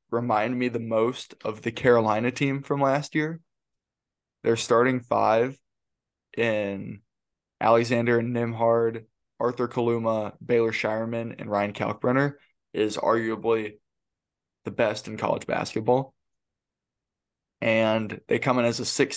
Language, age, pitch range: English, 20-39, 110-125 Hz